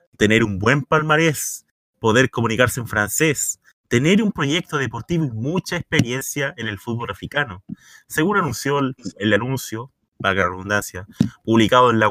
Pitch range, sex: 110-145 Hz, male